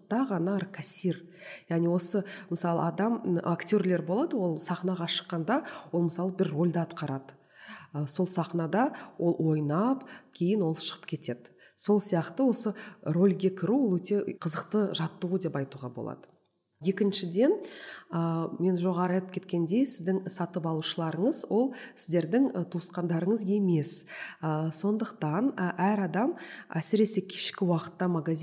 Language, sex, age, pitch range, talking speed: Russian, female, 20-39, 165-205 Hz, 105 wpm